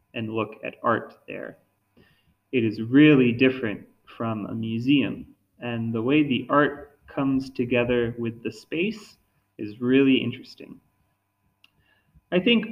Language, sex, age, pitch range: Japanese, male, 20-39, 115-135 Hz